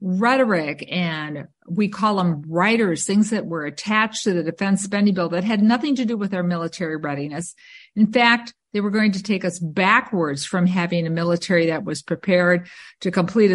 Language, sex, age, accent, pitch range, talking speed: English, female, 50-69, American, 175-210 Hz, 185 wpm